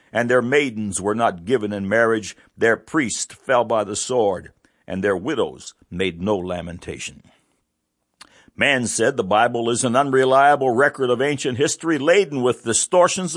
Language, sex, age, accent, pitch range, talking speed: English, male, 60-79, American, 110-145 Hz, 155 wpm